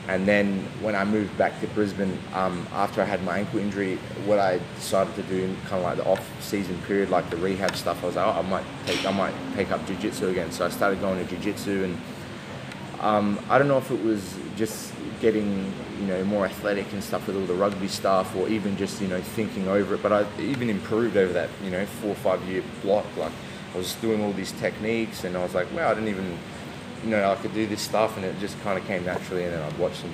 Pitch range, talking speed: 90-105 Hz, 250 wpm